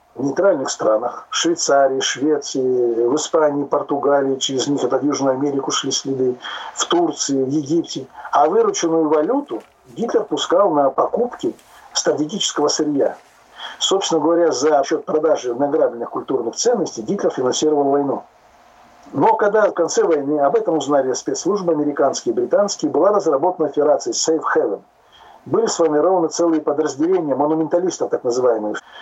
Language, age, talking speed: Russian, 50-69, 135 wpm